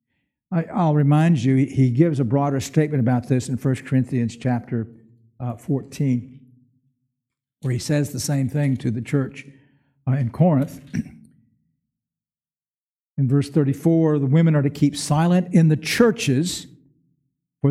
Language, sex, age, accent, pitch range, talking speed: English, male, 60-79, American, 125-155 Hz, 140 wpm